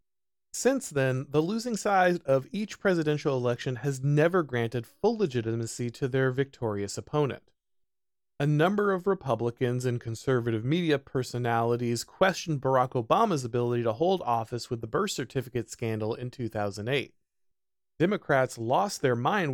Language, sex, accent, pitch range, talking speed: English, male, American, 120-170 Hz, 135 wpm